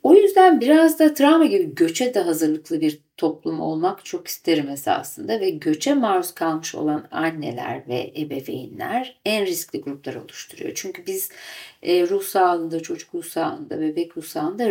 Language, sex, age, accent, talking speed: Turkish, female, 50-69, native, 150 wpm